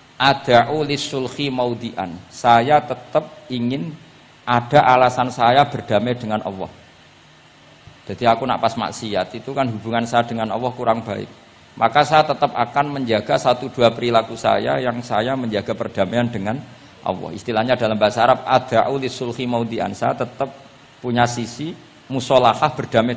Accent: native